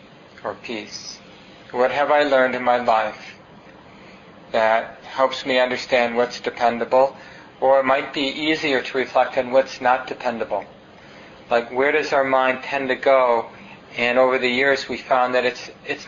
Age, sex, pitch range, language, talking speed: 40-59, male, 115-130 Hz, English, 155 wpm